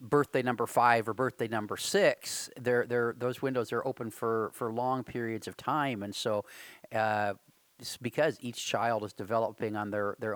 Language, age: English, 40-59